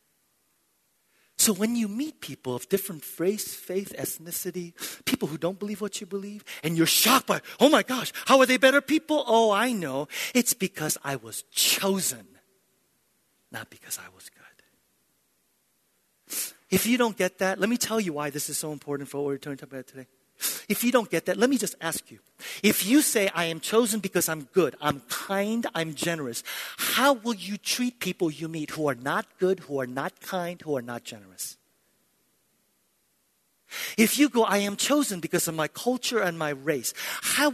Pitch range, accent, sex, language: 150-220 Hz, American, male, English